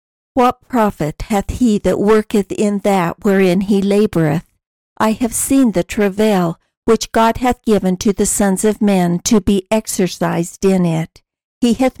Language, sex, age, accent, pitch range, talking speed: English, female, 60-79, American, 180-215 Hz, 160 wpm